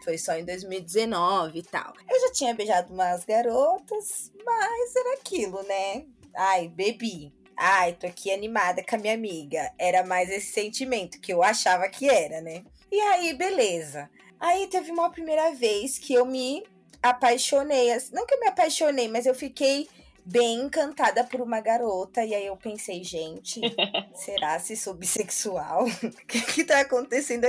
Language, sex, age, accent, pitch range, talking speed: Portuguese, female, 20-39, Brazilian, 190-255 Hz, 165 wpm